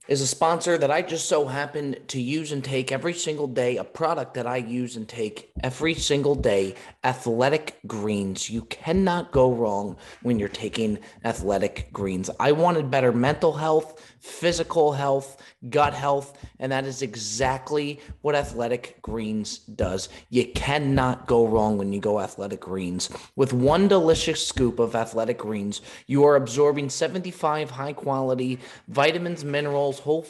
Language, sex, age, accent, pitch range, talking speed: English, male, 30-49, American, 120-150 Hz, 155 wpm